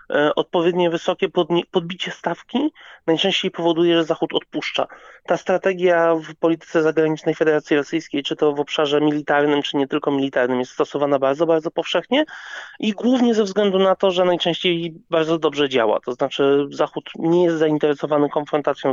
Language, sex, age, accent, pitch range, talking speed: Polish, male, 30-49, native, 155-200 Hz, 150 wpm